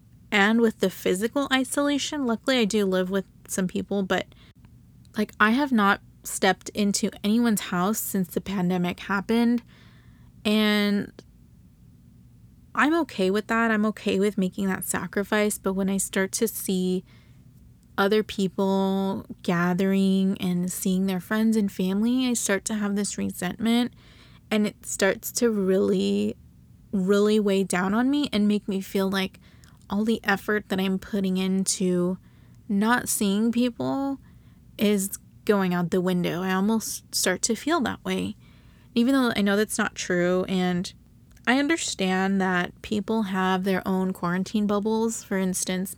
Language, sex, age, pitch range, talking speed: English, female, 20-39, 185-215 Hz, 145 wpm